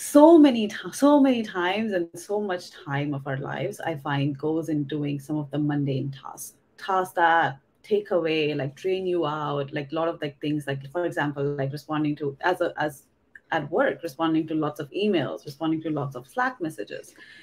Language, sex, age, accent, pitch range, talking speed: English, female, 30-49, Indian, 150-205 Hz, 200 wpm